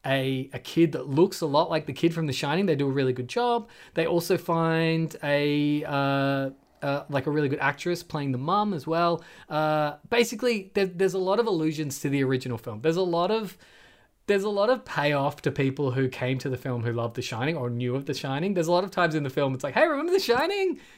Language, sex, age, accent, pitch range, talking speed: English, male, 20-39, Australian, 135-185 Hz, 245 wpm